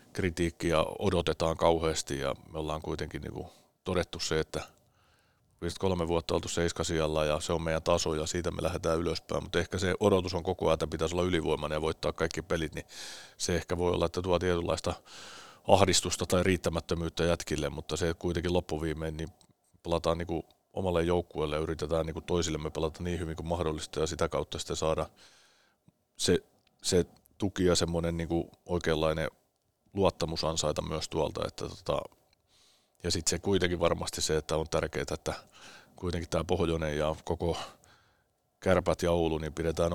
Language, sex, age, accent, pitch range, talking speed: Finnish, male, 30-49, native, 80-90 Hz, 160 wpm